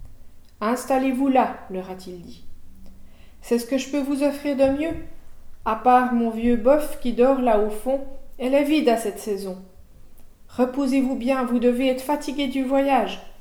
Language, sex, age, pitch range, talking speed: French, female, 40-59, 210-275 Hz, 185 wpm